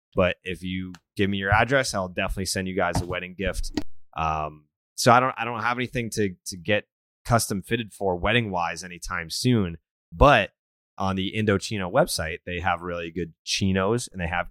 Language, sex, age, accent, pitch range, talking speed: English, male, 30-49, American, 90-125 Hz, 190 wpm